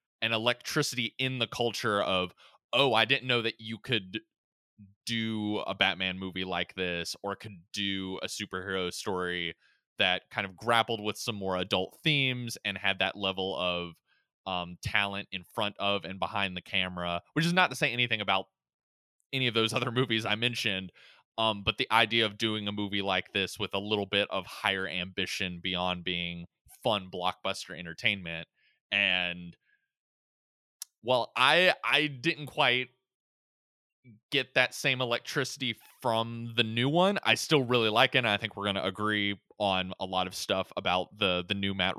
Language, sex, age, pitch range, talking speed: English, male, 20-39, 95-115 Hz, 170 wpm